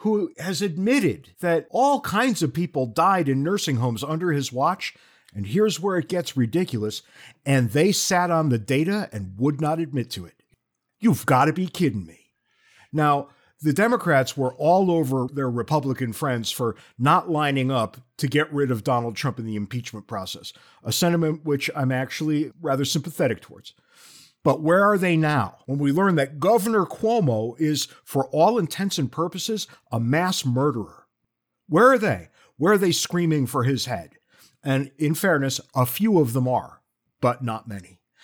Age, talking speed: 50-69, 175 wpm